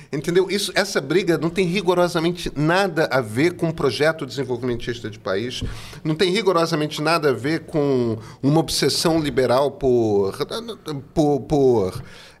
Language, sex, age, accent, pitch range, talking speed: Portuguese, male, 40-59, Brazilian, 140-190 Hz, 130 wpm